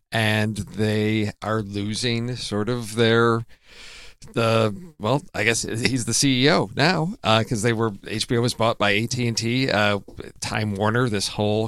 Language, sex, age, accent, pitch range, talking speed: English, male, 40-59, American, 105-125 Hz, 150 wpm